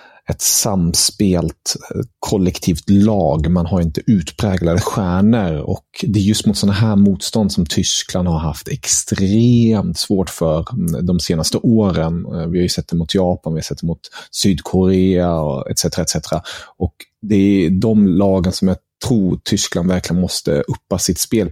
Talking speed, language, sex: 160 wpm, Swedish, male